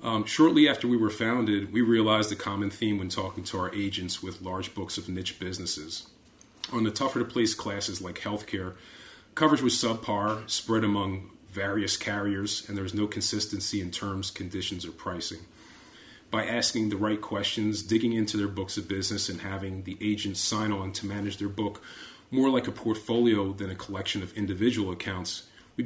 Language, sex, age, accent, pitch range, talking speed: English, male, 30-49, American, 95-110 Hz, 180 wpm